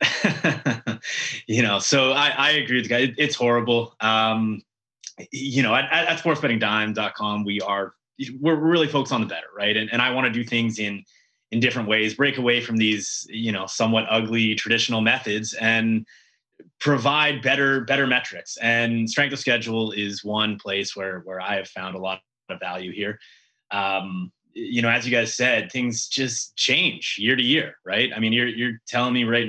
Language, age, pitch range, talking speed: English, 20-39, 110-130 Hz, 190 wpm